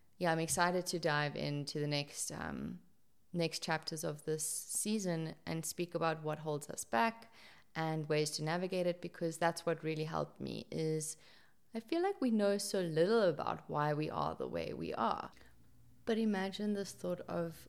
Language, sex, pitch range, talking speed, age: English, female, 145-170 Hz, 180 wpm, 30-49